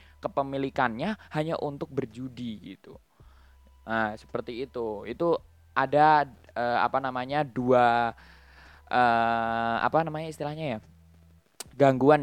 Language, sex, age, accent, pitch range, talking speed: Indonesian, male, 10-29, native, 120-145 Hz, 100 wpm